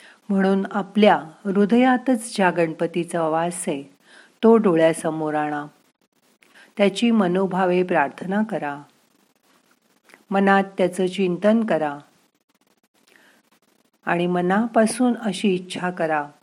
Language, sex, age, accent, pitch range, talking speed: Marathi, female, 50-69, native, 160-200 Hz, 85 wpm